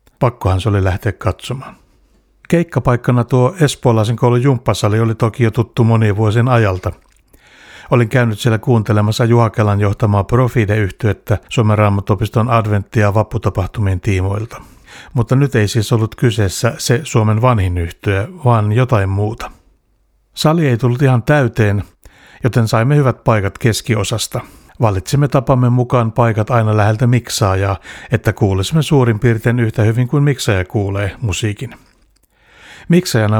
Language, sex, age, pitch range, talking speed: Finnish, male, 60-79, 105-125 Hz, 125 wpm